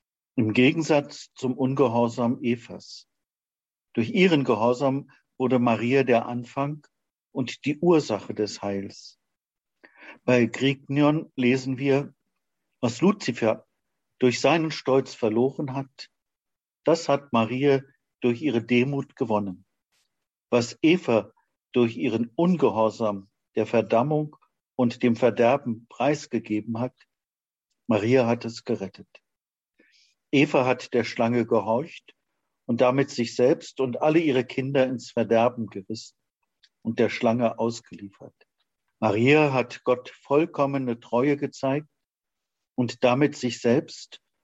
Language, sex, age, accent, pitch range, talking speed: German, male, 50-69, German, 115-135 Hz, 110 wpm